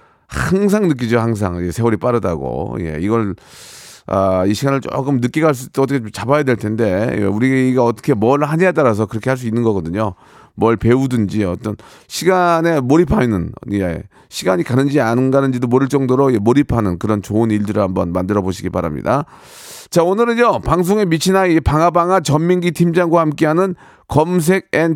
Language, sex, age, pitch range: Korean, male, 30-49, 115-170 Hz